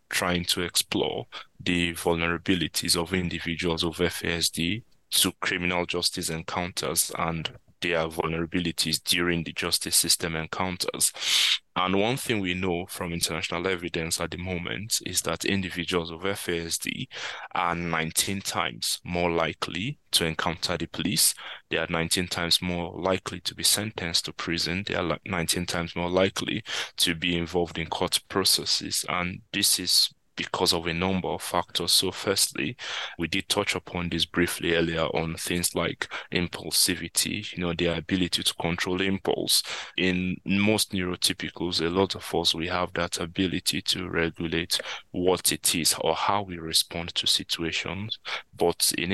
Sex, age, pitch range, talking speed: male, 20-39, 85-90 Hz, 150 wpm